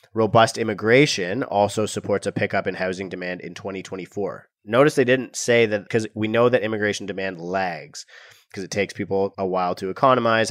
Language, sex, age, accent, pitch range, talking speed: English, male, 30-49, American, 95-115 Hz, 175 wpm